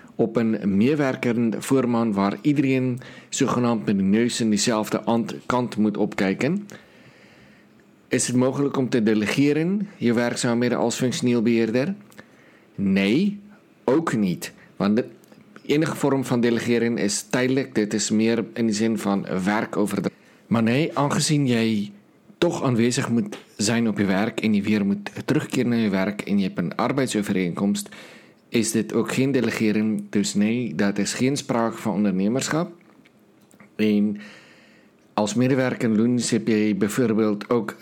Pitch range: 105-130 Hz